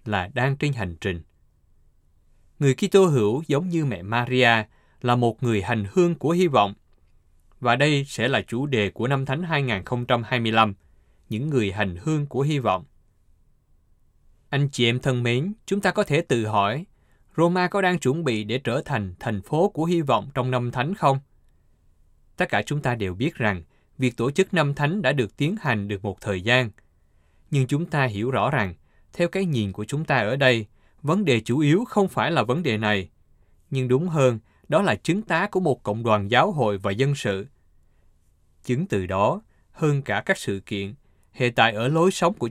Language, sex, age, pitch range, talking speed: Vietnamese, male, 20-39, 100-145 Hz, 195 wpm